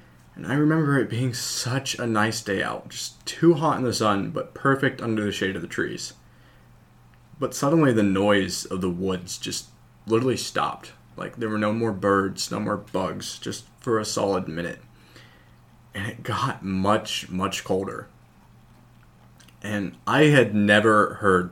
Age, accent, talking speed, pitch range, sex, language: 20-39, American, 165 wpm, 100-130 Hz, male, English